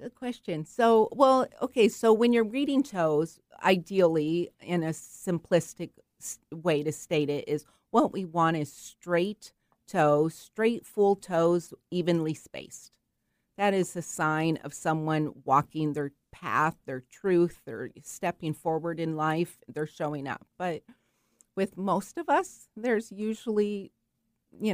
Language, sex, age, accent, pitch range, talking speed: English, female, 40-59, American, 150-185 Hz, 140 wpm